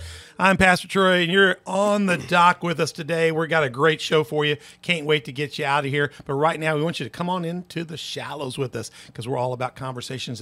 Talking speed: 260 wpm